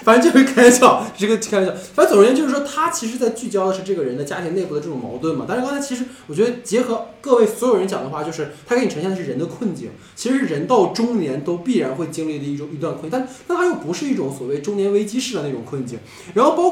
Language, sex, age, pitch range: Chinese, male, 20-39, 155-230 Hz